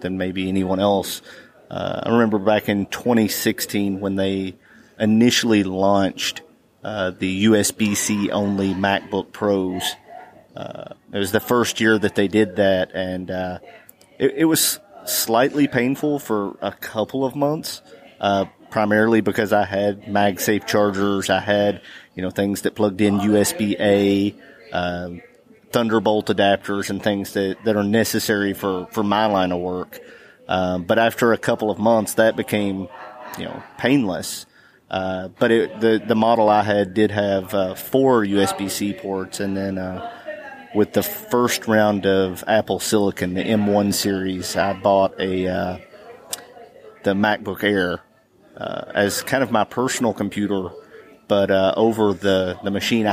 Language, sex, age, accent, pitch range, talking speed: English, male, 30-49, American, 95-110 Hz, 150 wpm